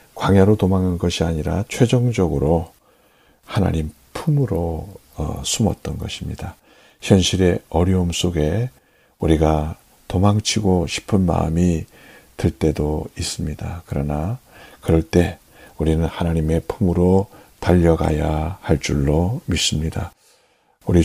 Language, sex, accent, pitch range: Korean, male, native, 80-100 Hz